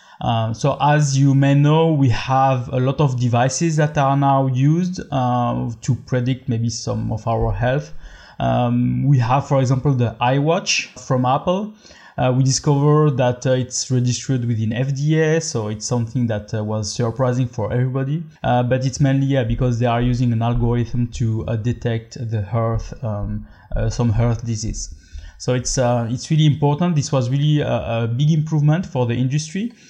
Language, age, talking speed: English, 20-39, 175 wpm